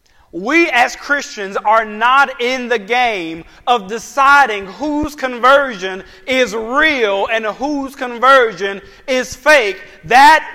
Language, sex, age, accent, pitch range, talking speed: English, male, 40-59, American, 215-285 Hz, 115 wpm